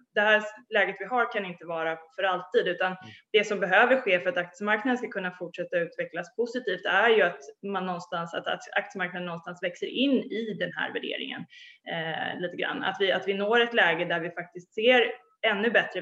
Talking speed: 200 wpm